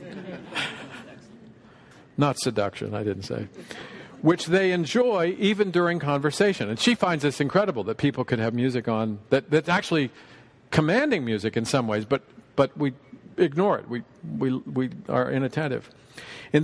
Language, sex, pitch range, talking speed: English, male, 120-165 Hz, 150 wpm